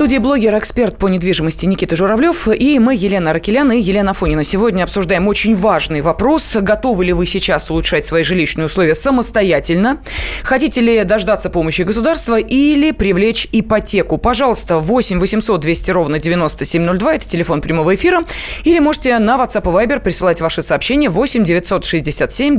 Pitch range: 175-230 Hz